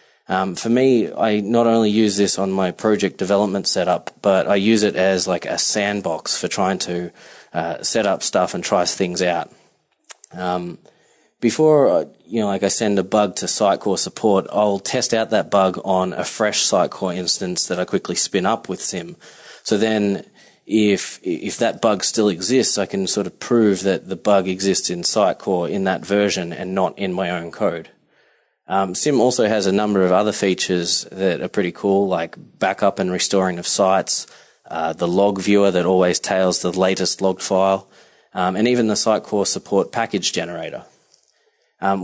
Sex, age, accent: male, 20-39, Australian